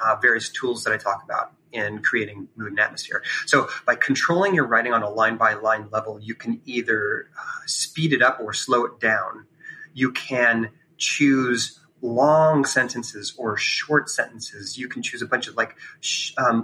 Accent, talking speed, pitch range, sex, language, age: American, 185 wpm, 115-145 Hz, male, English, 30-49